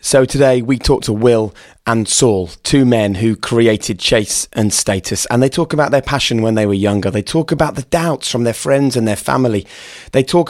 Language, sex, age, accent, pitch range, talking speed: English, male, 30-49, British, 100-130 Hz, 215 wpm